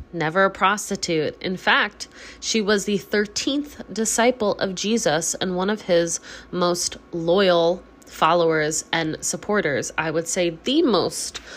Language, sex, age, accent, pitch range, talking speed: English, female, 20-39, American, 165-215 Hz, 135 wpm